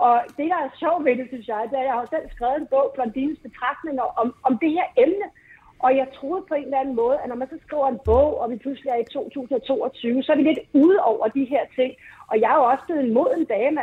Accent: native